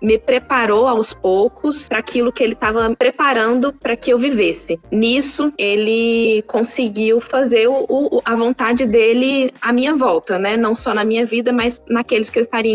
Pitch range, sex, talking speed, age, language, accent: 210-250 Hz, female, 165 wpm, 10-29, Portuguese, Brazilian